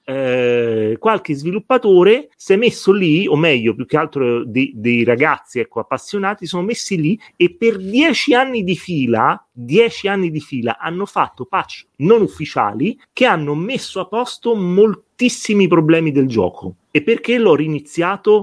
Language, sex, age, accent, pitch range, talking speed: Italian, male, 30-49, native, 125-195 Hz, 150 wpm